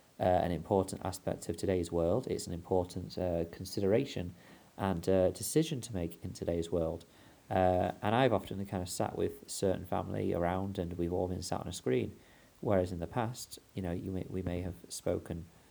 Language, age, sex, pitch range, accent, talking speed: English, 30-49, male, 85-100 Hz, British, 185 wpm